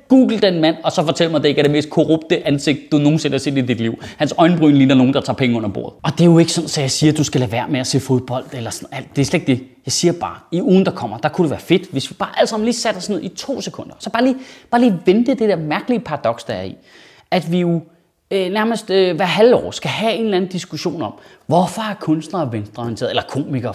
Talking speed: 295 wpm